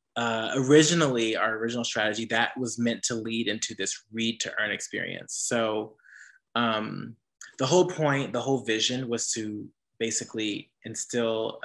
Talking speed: 145 wpm